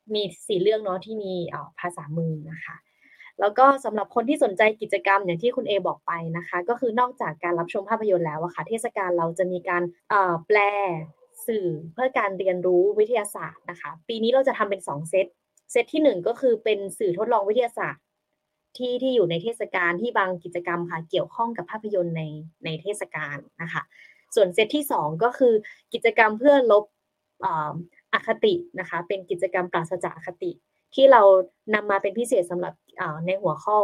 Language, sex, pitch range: Thai, female, 175-230 Hz